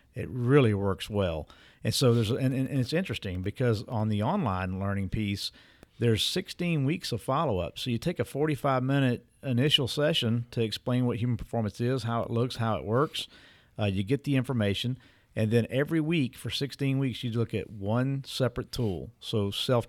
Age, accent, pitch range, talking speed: 50-69, American, 110-130 Hz, 190 wpm